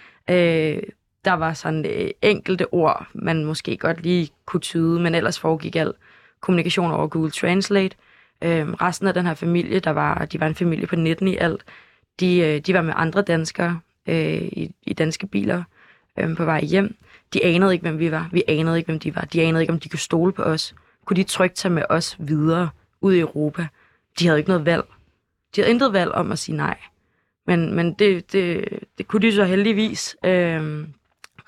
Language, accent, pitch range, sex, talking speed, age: Danish, native, 160-185 Hz, female, 185 wpm, 20-39